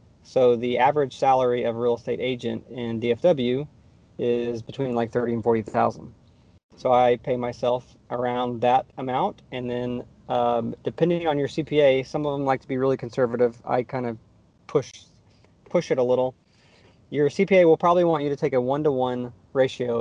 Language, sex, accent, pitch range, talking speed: English, male, American, 120-140 Hz, 175 wpm